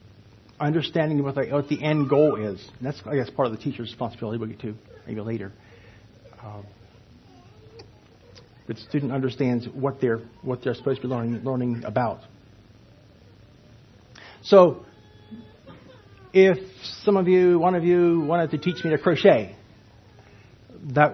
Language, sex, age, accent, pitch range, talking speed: English, male, 50-69, American, 110-150 Hz, 135 wpm